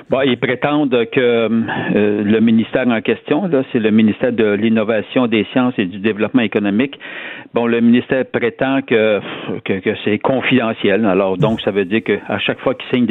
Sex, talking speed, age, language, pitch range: male, 185 wpm, 60-79, French, 105-125 Hz